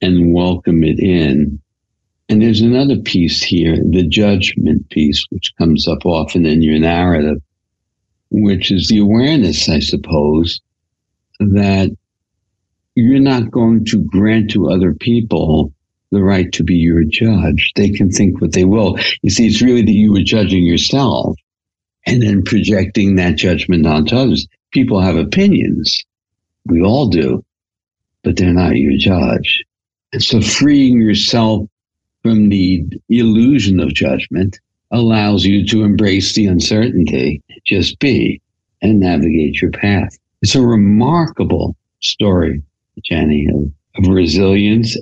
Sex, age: male, 60-79